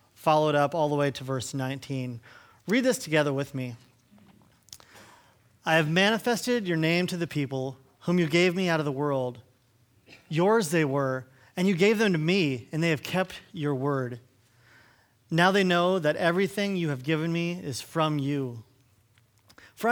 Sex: male